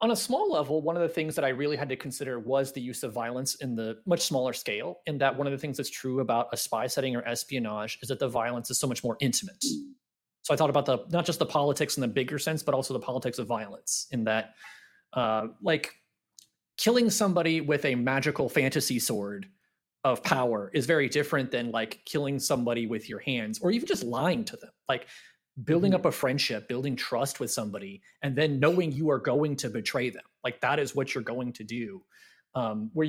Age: 30-49